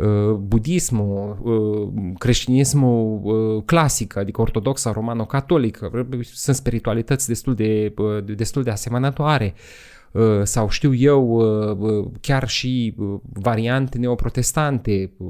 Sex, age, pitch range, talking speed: male, 30-49, 110-135 Hz, 80 wpm